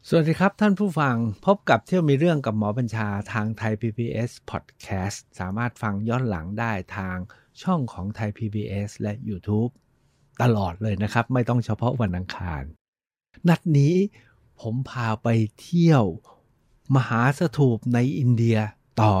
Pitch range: 110-145 Hz